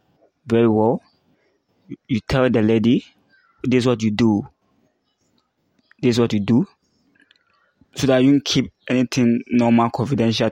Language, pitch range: English, 110-130 Hz